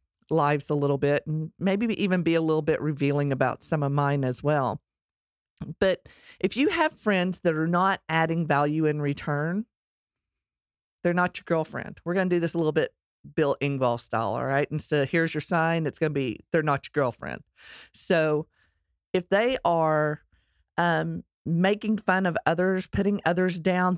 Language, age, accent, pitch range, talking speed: English, 40-59, American, 145-180 Hz, 180 wpm